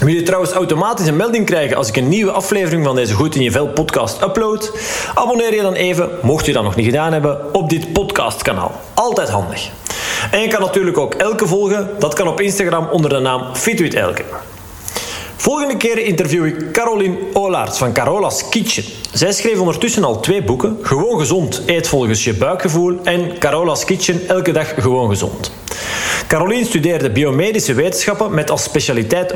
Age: 40-59